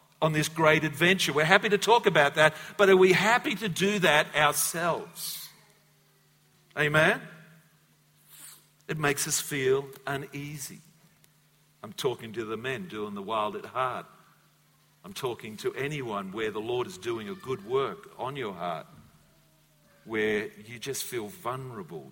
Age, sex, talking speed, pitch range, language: 50-69, male, 145 wpm, 125-180 Hz, English